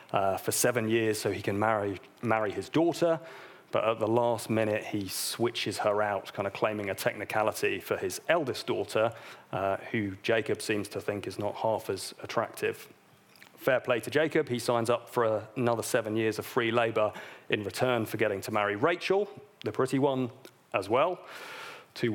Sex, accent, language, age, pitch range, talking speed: male, British, English, 30-49, 110-135 Hz, 185 wpm